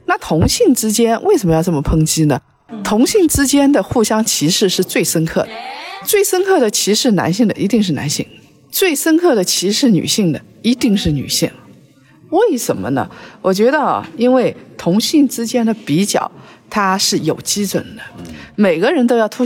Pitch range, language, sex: 165-245 Hz, Chinese, female